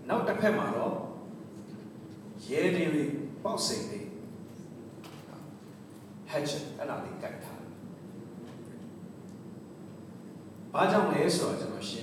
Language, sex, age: English, male, 60-79